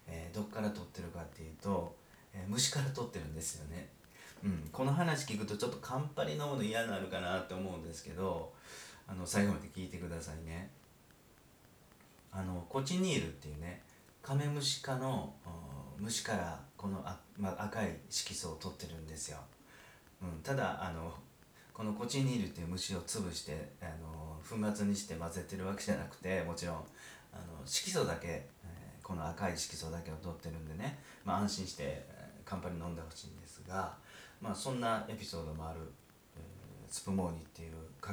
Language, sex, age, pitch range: Japanese, male, 40-59, 80-100 Hz